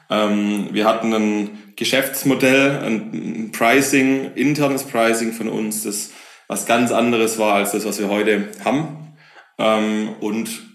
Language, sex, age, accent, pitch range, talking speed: German, male, 20-39, German, 95-115 Hz, 125 wpm